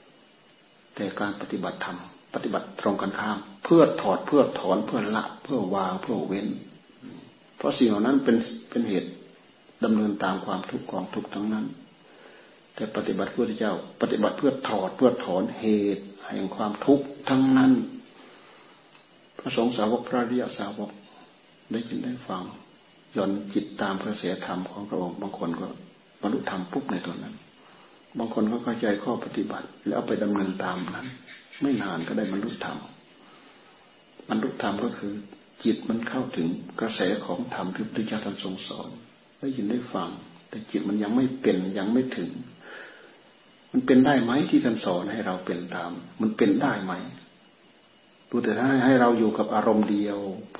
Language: Thai